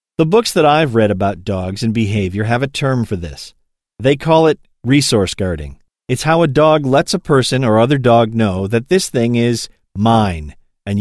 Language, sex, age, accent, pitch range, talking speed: English, male, 40-59, American, 110-150 Hz, 195 wpm